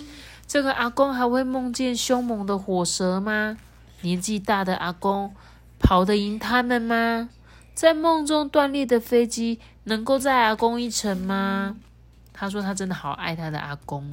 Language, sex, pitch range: Chinese, female, 170-240 Hz